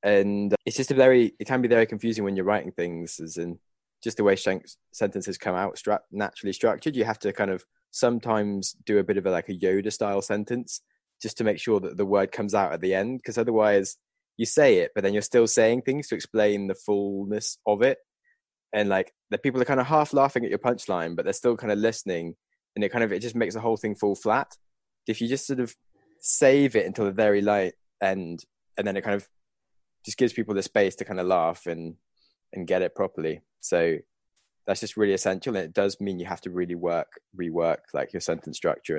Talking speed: 230 wpm